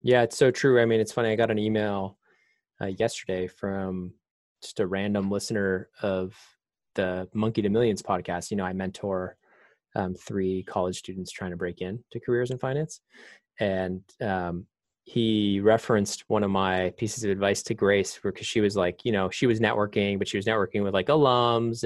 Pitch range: 95-120 Hz